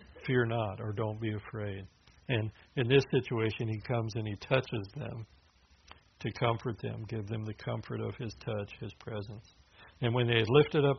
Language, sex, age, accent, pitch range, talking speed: English, male, 60-79, American, 105-120 Hz, 185 wpm